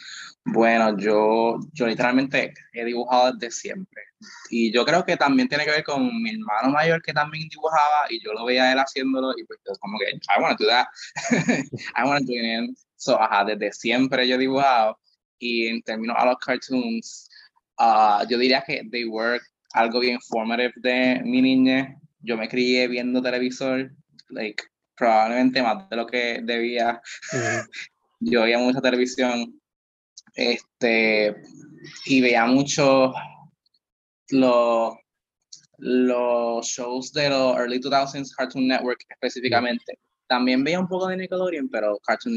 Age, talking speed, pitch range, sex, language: 20-39, 150 wpm, 115-135 Hz, male, Spanish